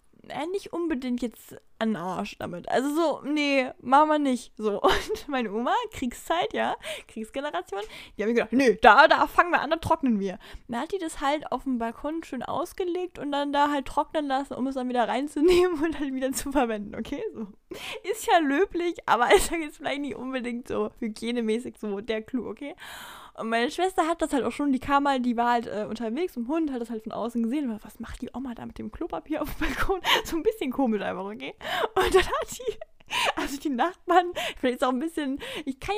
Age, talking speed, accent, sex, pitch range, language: 10-29, 220 wpm, German, female, 235-330 Hz, German